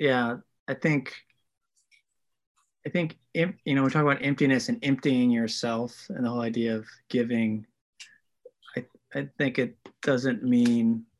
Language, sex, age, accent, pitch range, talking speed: English, male, 20-39, American, 115-140 Hz, 140 wpm